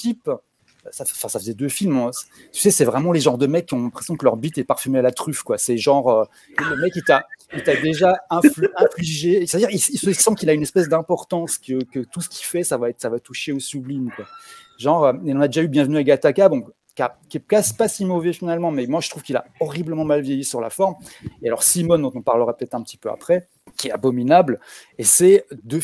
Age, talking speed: 30-49, 250 wpm